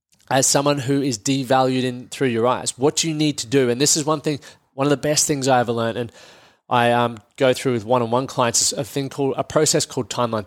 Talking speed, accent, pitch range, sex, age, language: 240 wpm, Australian, 115-140 Hz, male, 20-39, English